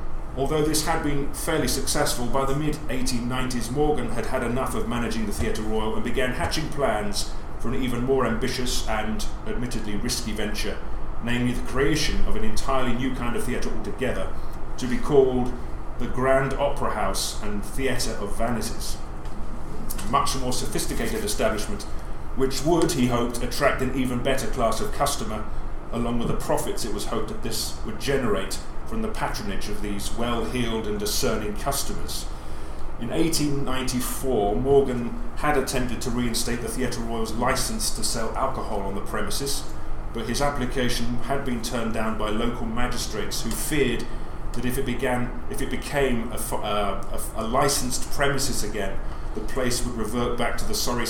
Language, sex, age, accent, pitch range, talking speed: English, male, 30-49, British, 105-130 Hz, 165 wpm